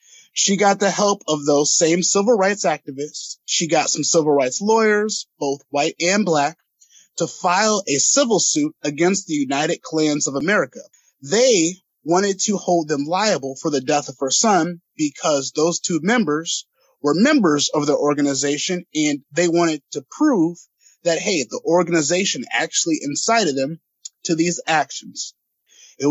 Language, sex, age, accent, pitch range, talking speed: English, male, 30-49, American, 150-215 Hz, 155 wpm